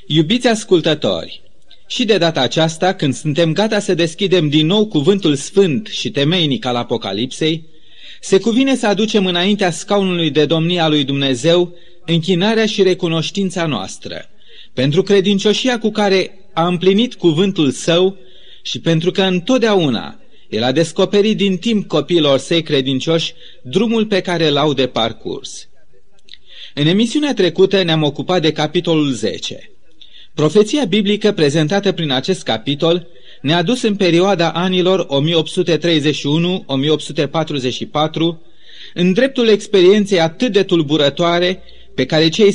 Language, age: Romanian, 30-49